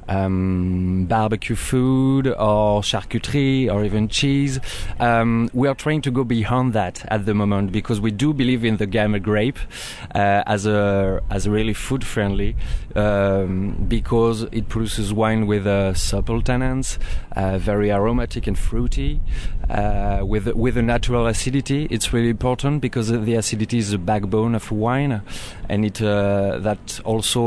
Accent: French